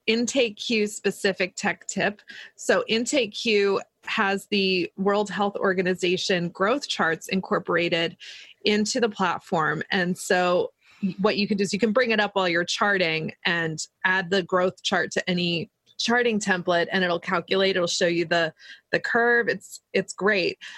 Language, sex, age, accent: English, female, 20-39, American